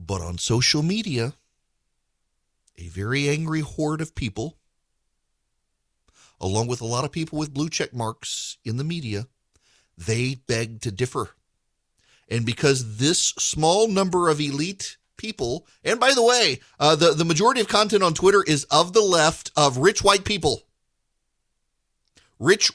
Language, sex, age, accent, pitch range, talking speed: English, male, 40-59, American, 125-190 Hz, 150 wpm